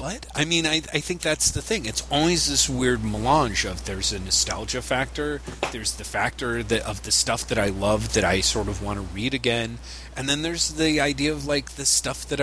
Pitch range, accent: 90-135 Hz, American